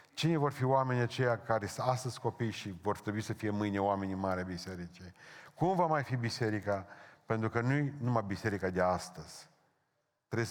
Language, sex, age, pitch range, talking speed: Romanian, male, 40-59, 105-130 Hz, 185 wpm